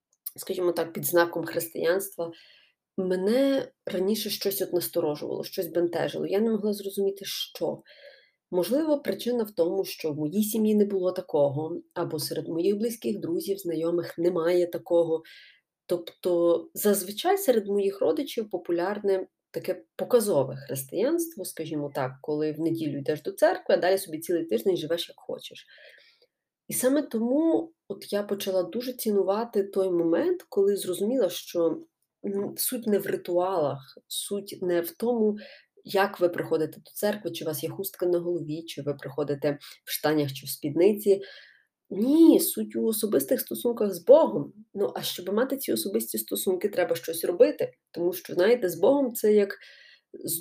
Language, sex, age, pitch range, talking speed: Ukrainian, female, 30-49, 170-220 Hz, 150 wpm